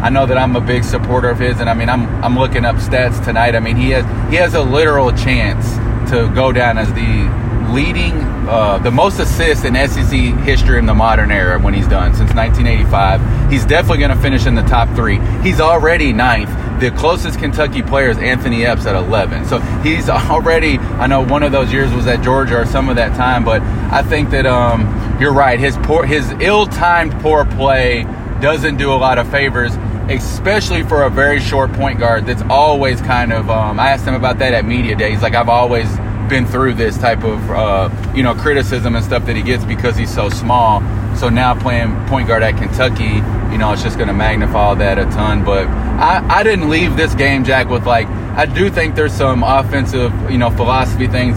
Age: 30-49